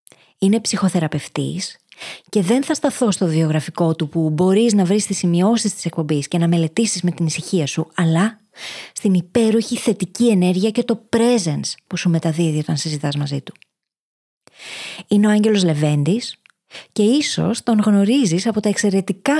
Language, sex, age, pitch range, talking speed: Greek, female, 20-39, 170-225 Hz, 155 wpm